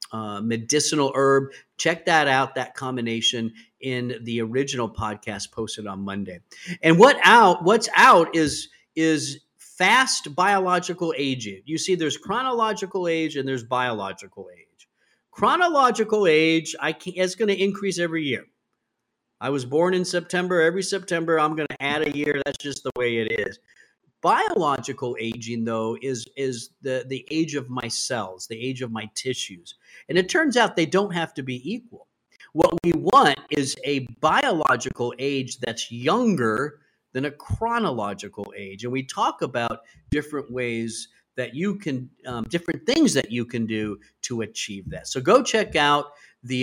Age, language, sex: 50-69, English, male